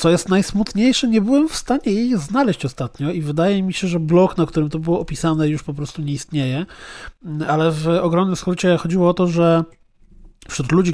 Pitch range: 145-185 Hz